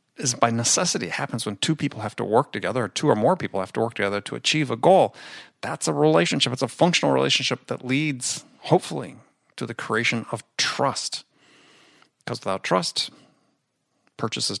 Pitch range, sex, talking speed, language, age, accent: 110-150 Hz, male, 180 wpm, English, 40-59, American